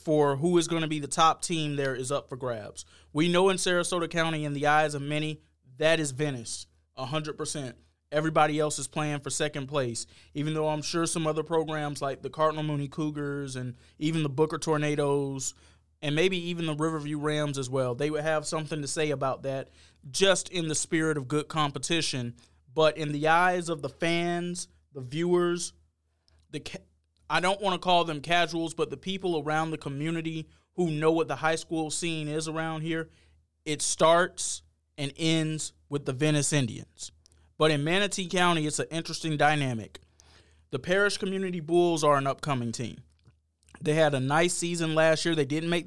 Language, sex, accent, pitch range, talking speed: English, male, American, 135-165 Hz, 185 wpm